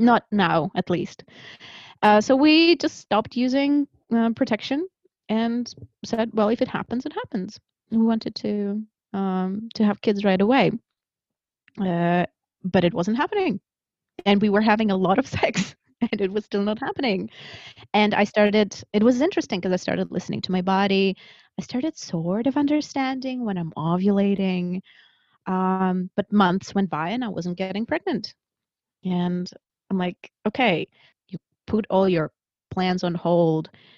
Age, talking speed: 20-39, 160 wpm